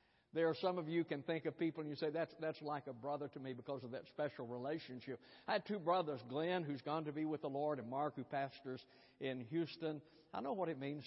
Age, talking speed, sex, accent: 60-79, 255 wpm, male, American